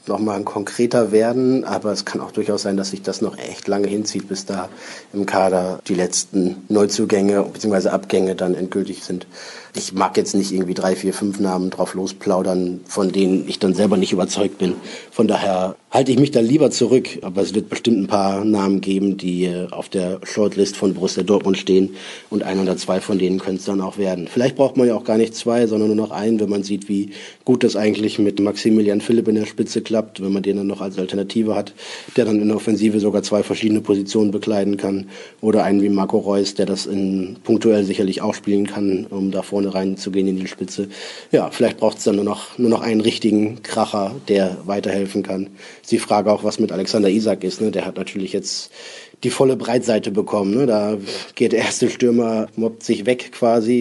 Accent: German